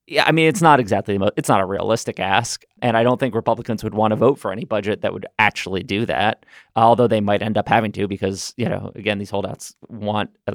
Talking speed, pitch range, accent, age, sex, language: 245 wpm, 100-125 Hz, American, 30-49, male, English